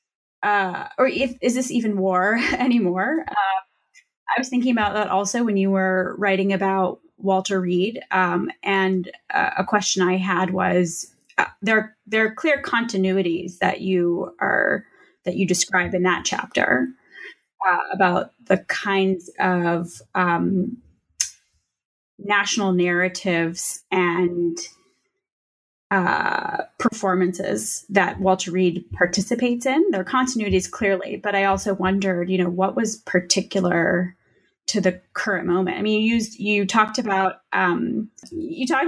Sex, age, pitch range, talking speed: female, 20-39, 185-230 Hz, 135 wpm